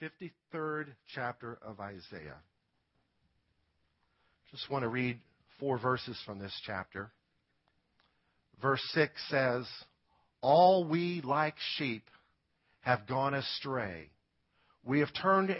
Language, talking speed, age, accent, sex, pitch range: English, 100 wpm, 50-69, American, male, 115-165 Hz